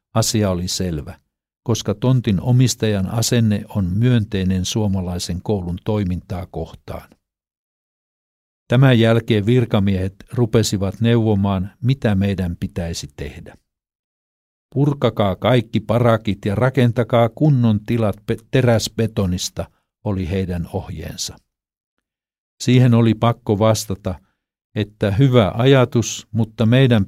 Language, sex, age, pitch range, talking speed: Finnish, male, 60-79, 95-120 Hz, 95 wpm